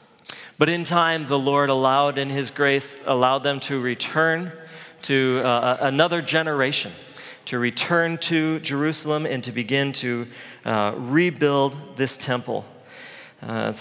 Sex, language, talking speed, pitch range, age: male, English, 130 wpm, 140-185 Hz, 40-59